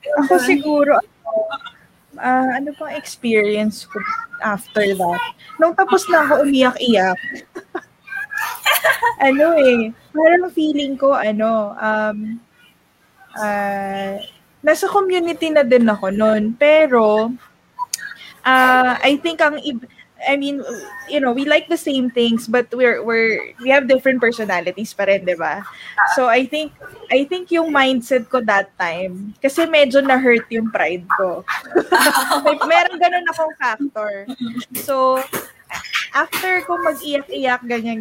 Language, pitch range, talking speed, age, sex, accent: English, 220-300 Hz, 130 wpm, 20-39, female, Filipino